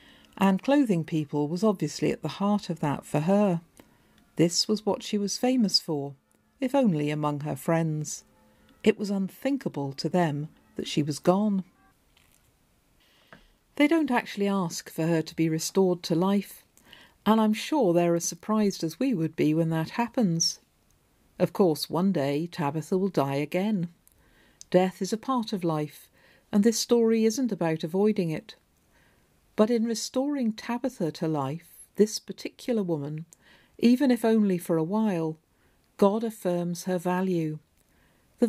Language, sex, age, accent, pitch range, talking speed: English, female, 50-69, British, 160-215 Hz, 155 wpm